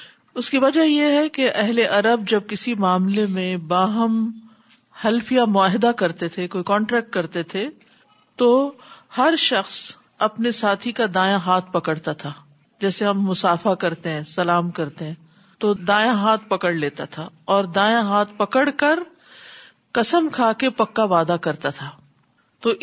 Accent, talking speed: Indian, 150 wpm